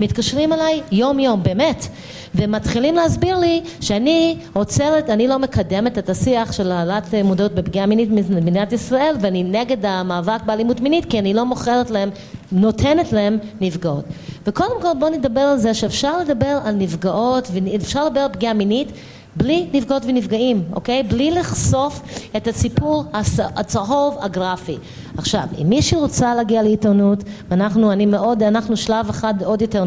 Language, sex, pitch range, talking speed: Hebrew, female, 190-245 Hz, 150 wpm